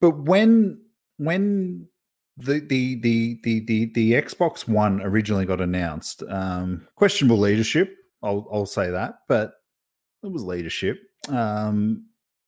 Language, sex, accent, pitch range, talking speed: English, male, Australian, 95-135 Hz, 125 wpm